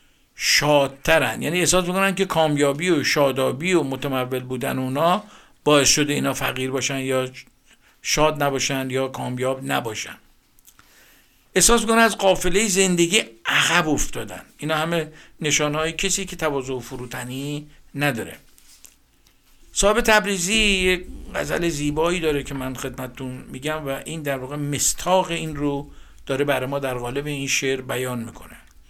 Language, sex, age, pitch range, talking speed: Persian, male, 60-79, 135-175 Hz, 130 wpm